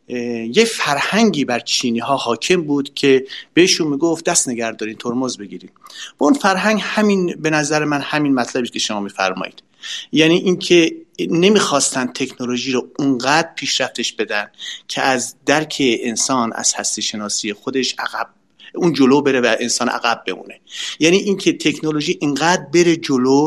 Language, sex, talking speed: Persian, male, 145 wpm